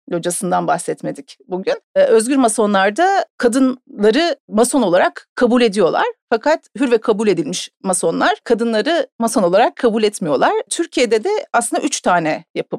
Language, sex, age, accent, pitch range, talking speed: Turkish, female, 40-59, native, 200-285 Hz, 125 wpm